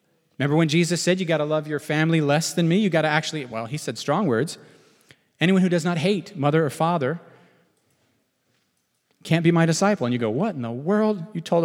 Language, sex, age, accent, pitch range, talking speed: English, male, 40-59, American, 130-170 Hz, 220 wpm